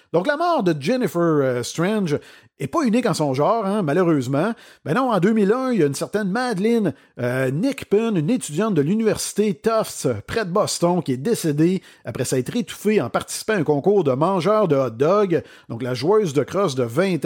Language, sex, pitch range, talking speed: French, male, 140-205 Hz, 205 wpm